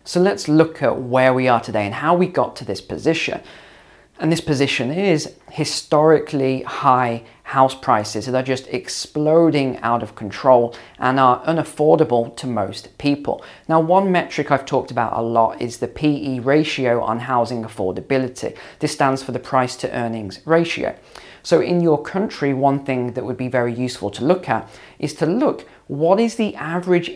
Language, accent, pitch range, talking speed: English, British, 120-160 Hz, 180 wpm